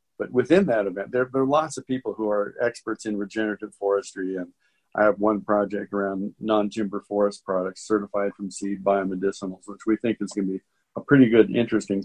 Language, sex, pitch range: English, male, 100-110 Hz